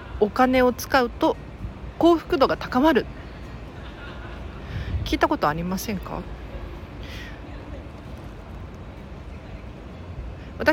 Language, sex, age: Japanese, female, 40-59